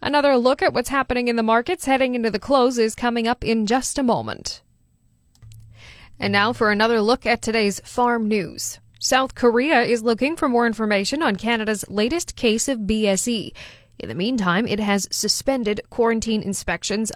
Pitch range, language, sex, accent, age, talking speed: 195-240 Hz, English, female, American, 10-29, 170 wpm